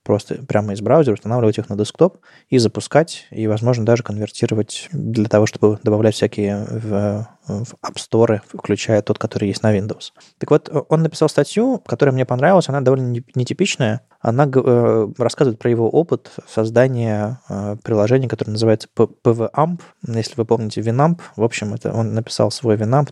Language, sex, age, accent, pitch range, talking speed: Russian, male, 20-39, native, 110-130 Hz, 160 wpm